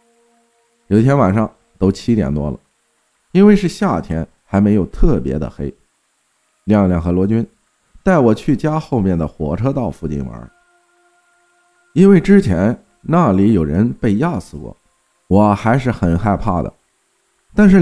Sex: male